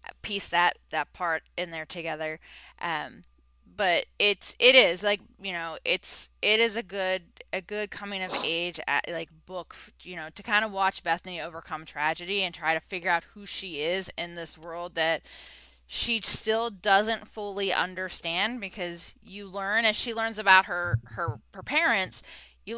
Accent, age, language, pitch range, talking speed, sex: American, 20-39, English, 160-215 Hz, 170 wpm, female